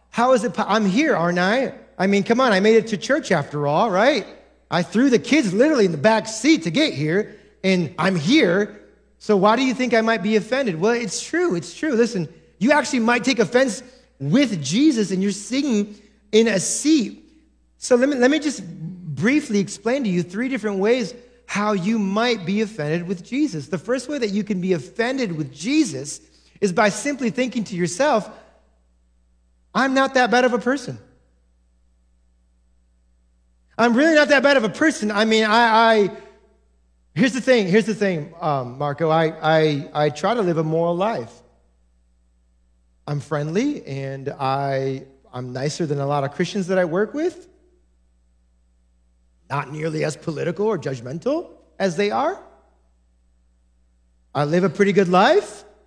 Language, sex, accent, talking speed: English, male, American, 175 wpm